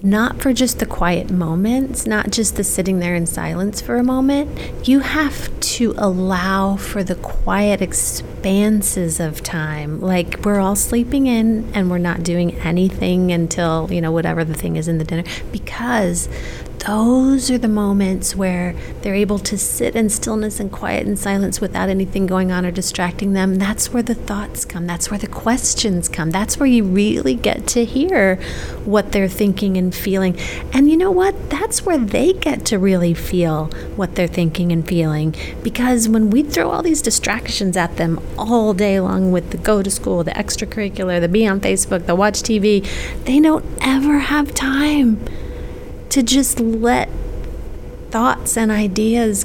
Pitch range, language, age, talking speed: 180-235 Hz, English, 30-49, 175 wpm